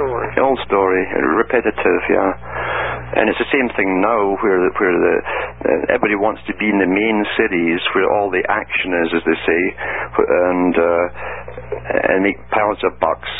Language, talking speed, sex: English, 170 wpm, male